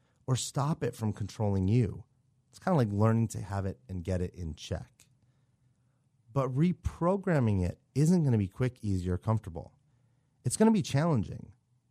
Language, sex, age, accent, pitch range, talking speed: English, male, 30-49, American, 100-130 Hz, 165 wpm